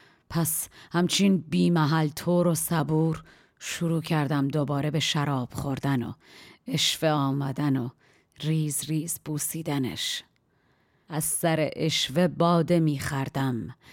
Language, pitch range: Persian, 140-165 Hz